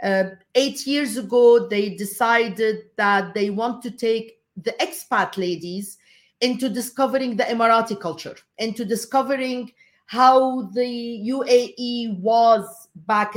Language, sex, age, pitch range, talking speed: English, female, 50-69, 205-255 Hz, 115 wpm